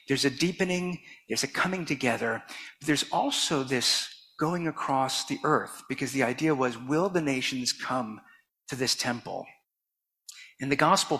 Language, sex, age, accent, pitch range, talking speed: English, male, 50-69, American, 120-145 Hz, 155 wpm